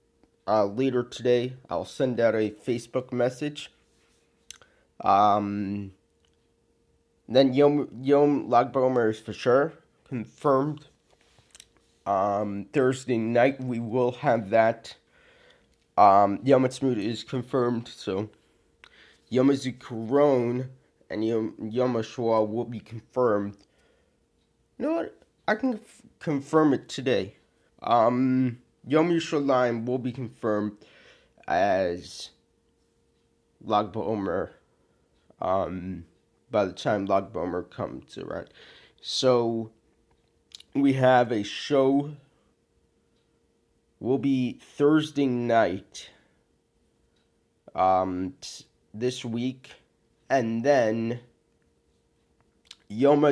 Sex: male